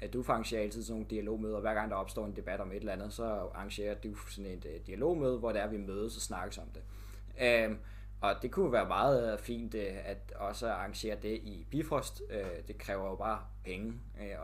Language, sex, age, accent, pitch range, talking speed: Danish, male, 20-39, native, 100-115 Hz, 225 wpm